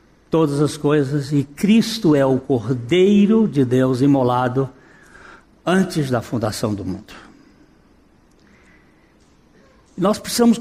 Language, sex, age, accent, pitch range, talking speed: Portuguese, male, 60-79, Brazilian, 135-190 Hz, 100 wpm